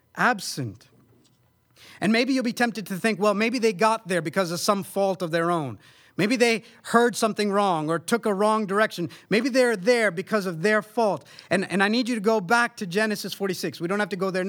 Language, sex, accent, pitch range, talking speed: English, male, American, 145-220 Hz, 225 wpm